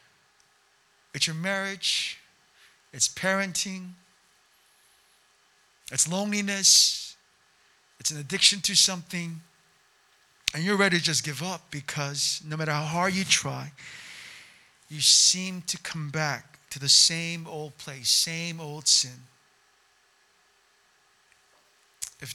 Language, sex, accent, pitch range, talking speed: English, male, American, 155-190 Hz, 105 wpm